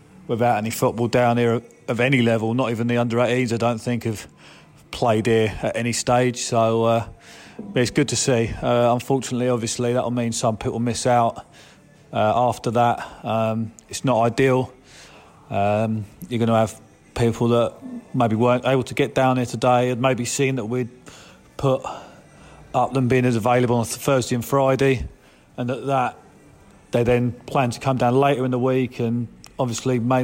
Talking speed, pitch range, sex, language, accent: 180 wpm, 115-130 Hz, male, English, British